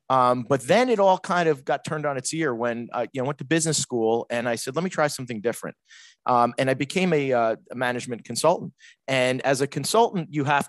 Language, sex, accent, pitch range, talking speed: English, male, American, 115-150 Hz, 225 wpm